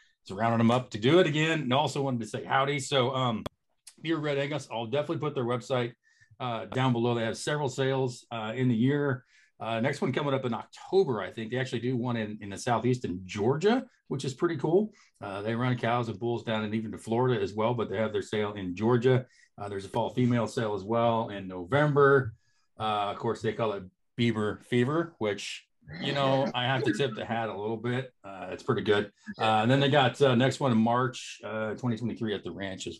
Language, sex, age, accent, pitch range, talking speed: English, male, 40-59, American, 110-135 Hz, 235 wpm